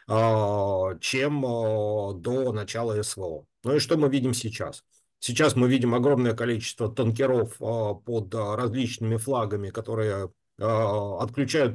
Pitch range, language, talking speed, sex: 105-130 Hz, Russian, 105 wpm, male